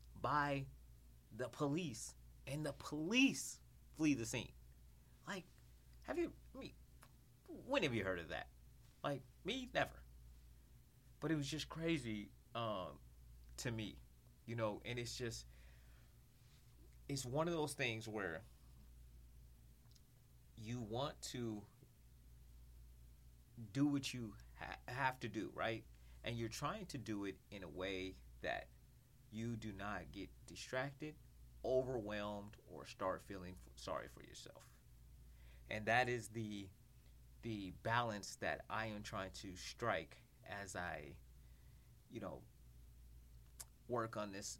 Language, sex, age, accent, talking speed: English, male, 30-49, American, 125 wpm